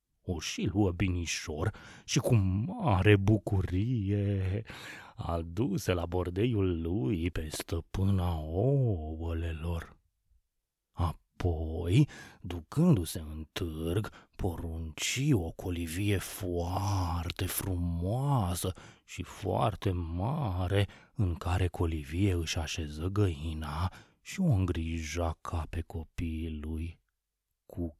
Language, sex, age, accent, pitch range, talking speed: Romanian, male, 30-49, native, 85-105 Hz, 80 wpm